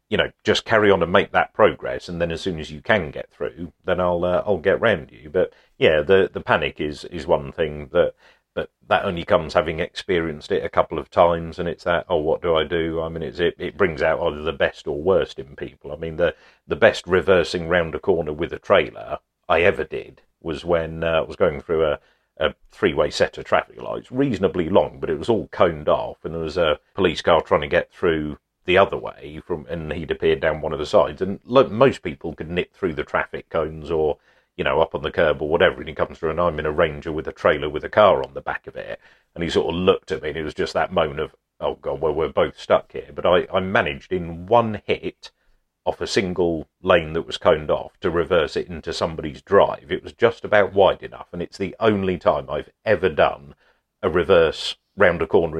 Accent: British